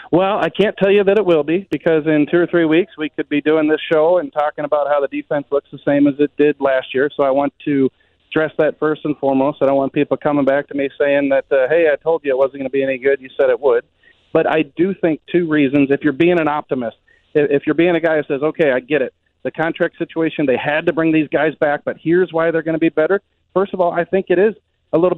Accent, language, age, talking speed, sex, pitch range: American, English, 40-59, 285 wpm, male, 145-175 Hz